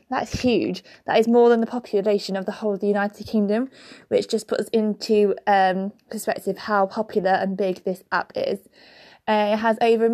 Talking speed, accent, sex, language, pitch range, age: 195 wpm, British, female, English, 200-235 Hz, 20-39